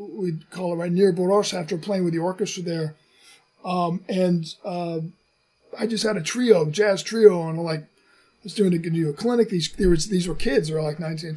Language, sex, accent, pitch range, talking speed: English, male, American, 165-210 Hz, 195 wpm